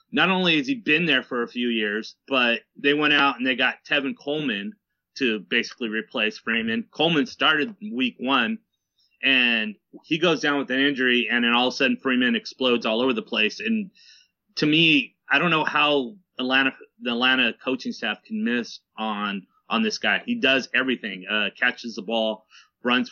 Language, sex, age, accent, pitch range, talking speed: English, male, 30-49, American, 115-190 Hz, 185 wpm